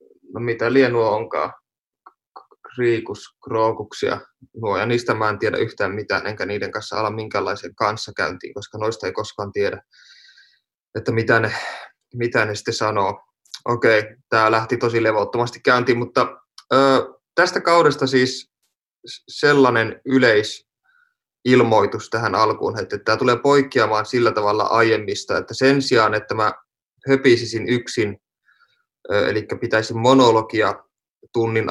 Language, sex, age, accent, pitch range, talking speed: Finnish, male, 20-39, native, 110-140 Hz, 120 wpm